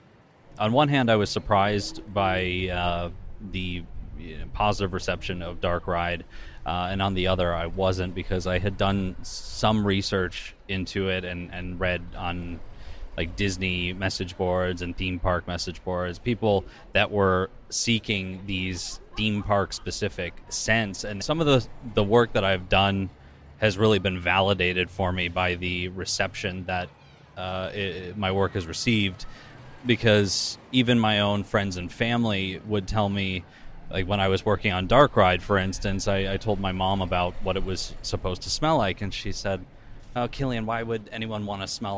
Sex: male